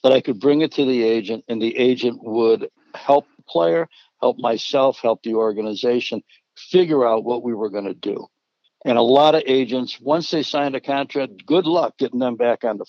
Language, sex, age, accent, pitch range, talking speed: English, male, 60-79, American, 115-135 Hz, 210 wpm